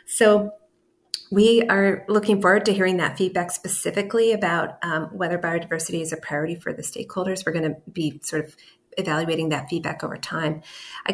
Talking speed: 170 wpm